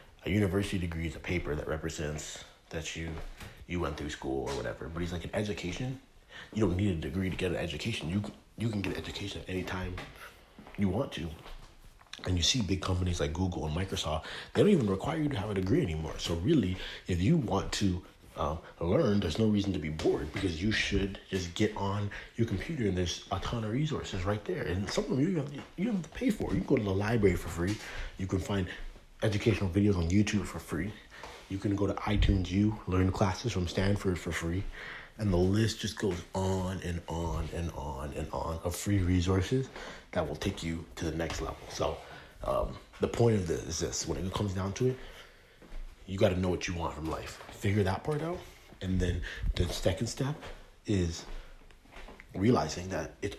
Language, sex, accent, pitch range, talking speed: English, male, American, 85-105 Hz, 215 wpm